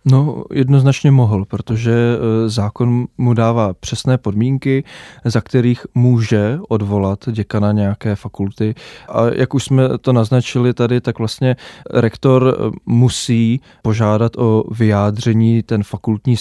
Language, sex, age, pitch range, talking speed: Czech, male, 20-39, 110-120 Hz, 115 wpm